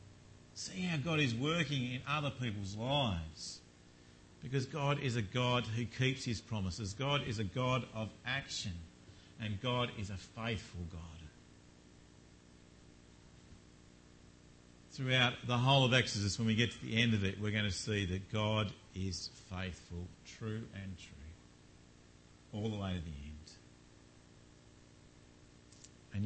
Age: 50-69